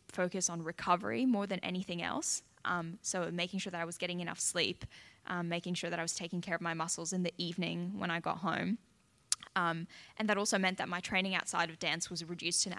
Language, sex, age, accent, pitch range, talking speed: English, female, 10-29, Australian, 175-200 Hz, 235 wpm